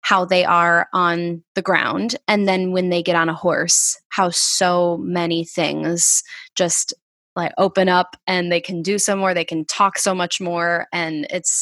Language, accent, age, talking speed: English, American, 10-29, 185 wpm